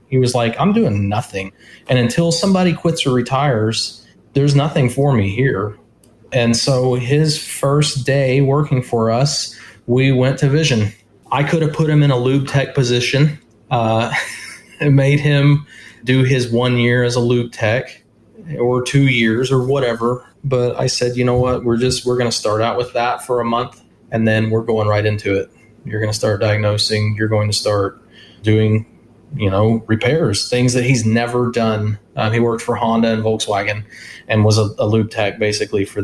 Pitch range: 110-135 Hz